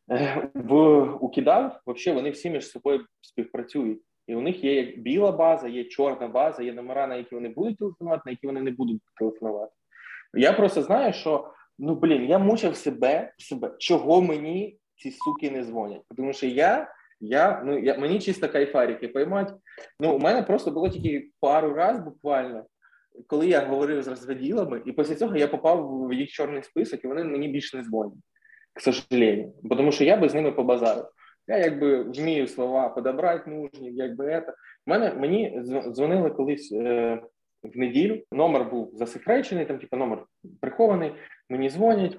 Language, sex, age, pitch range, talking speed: Ukrainian, male, 20-39, 130-170 Hz, 170 wpm